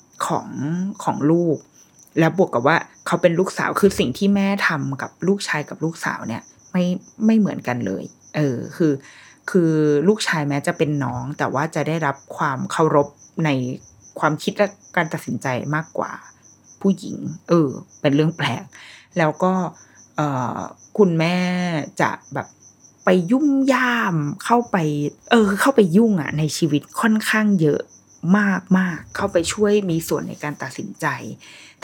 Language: Thai